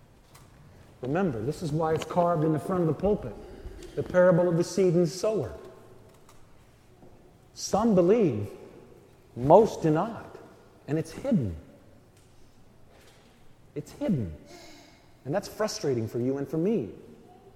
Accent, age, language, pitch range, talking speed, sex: American, 40-59, English, 130-175 Hz, 125 wpm, male